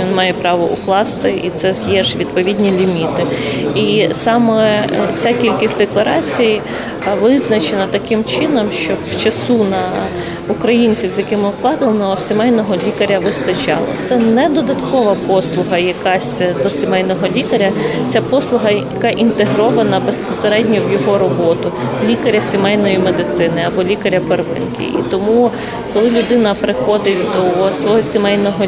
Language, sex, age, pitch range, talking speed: Ukrainian, female, 20-39, 195-230 Hz, 130 wpm